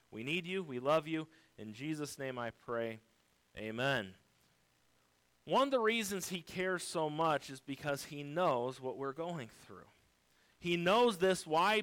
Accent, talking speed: American, 160 wpm